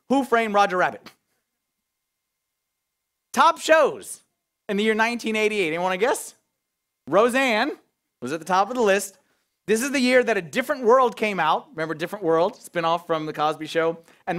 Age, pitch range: 30-49, 180-245 Hz